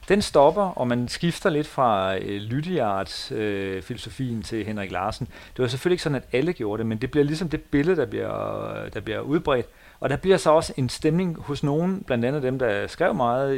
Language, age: Danish, 40-59